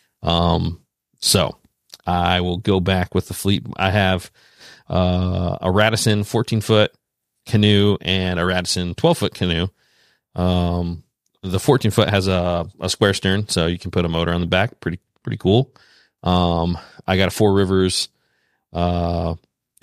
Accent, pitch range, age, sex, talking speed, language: American, 90-105 Hz, 40-59, male, 155 wpm, English